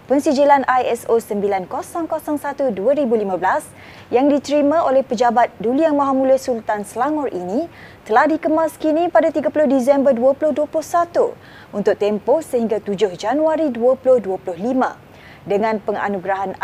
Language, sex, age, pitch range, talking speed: Malay, female, 20-39, 215-295 Hz, 110 wpm